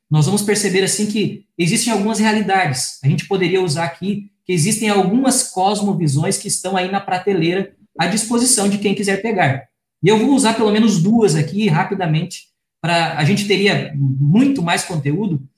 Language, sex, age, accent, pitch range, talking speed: Portuguese, male, 20-39, Brazilian, 155-205 Hz, 170 wpm